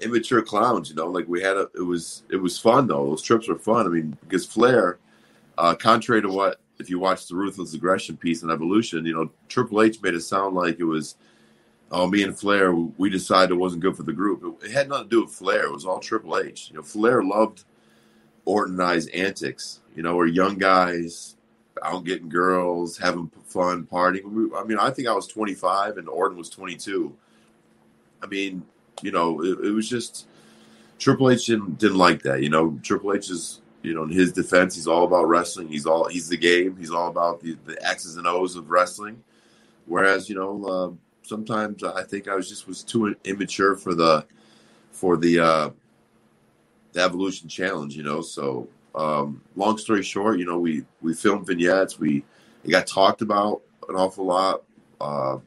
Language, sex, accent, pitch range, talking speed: English, male, American, 85-100 Hz, 200 wpm